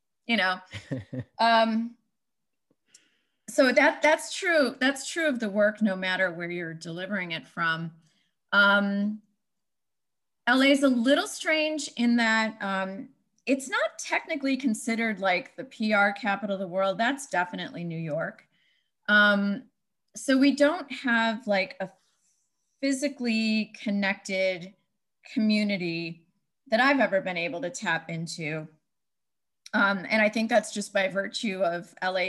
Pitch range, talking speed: 195-250 Hz, 130 wpm